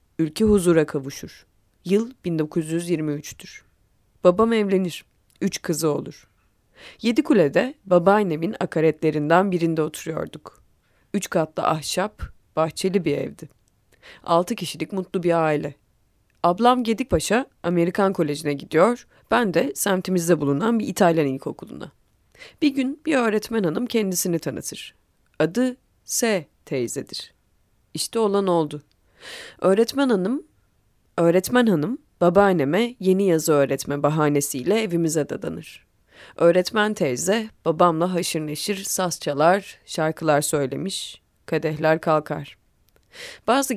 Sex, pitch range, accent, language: female, 145-195 Hz, native, Turkish